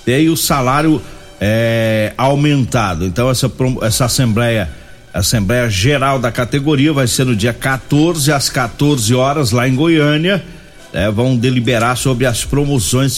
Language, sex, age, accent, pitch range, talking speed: Portuguese, male, 60-79, Brazilian, 115-145 Hz, 140 wpm